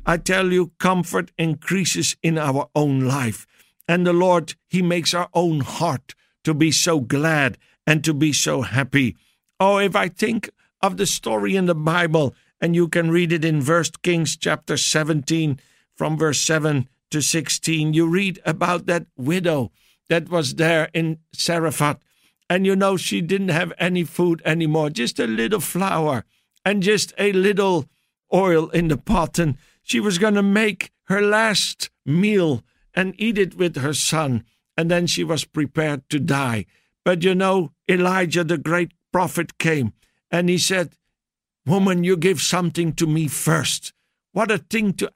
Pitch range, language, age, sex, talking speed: 150-190 Hz, English, 60-79, male, 165 wpm